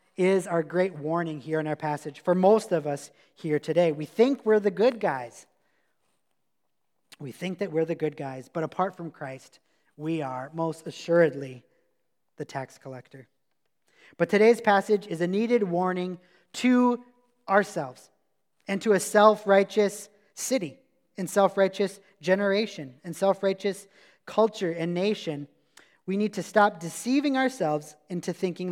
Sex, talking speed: male, 140 wpm